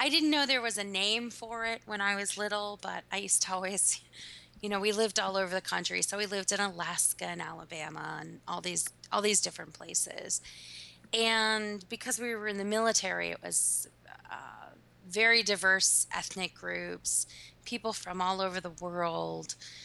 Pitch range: 185-230 Hz